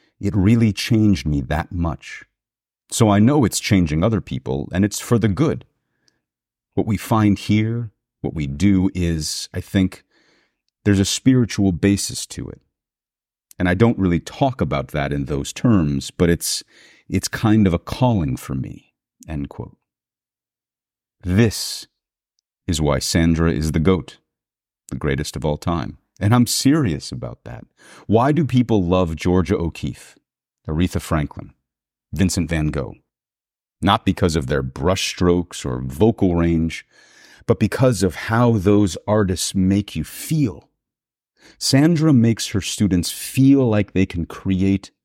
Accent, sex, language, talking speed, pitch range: American, male, English, 145 wpm, 80-110 Hz